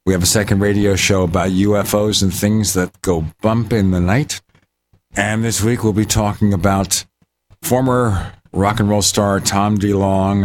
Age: 50-69